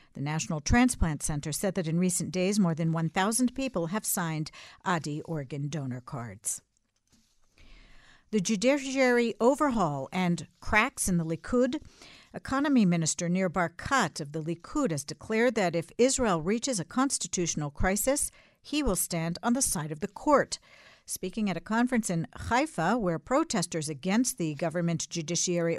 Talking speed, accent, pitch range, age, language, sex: 150 wpm, American, 165-235 Hz, 50-69, English, female